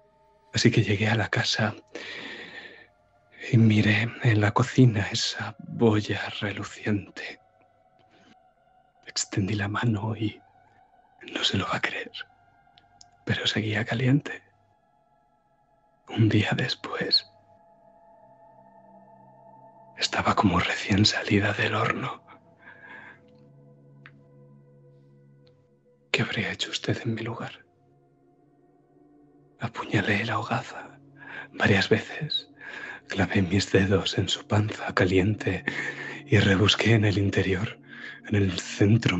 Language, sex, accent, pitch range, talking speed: Spanish, male, Spanish, 100-130 Hz, 95 wpm